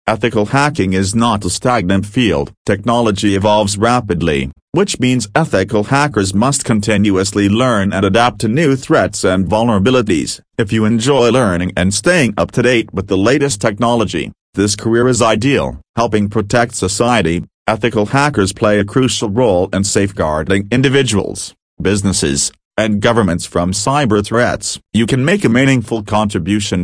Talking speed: 145 wpm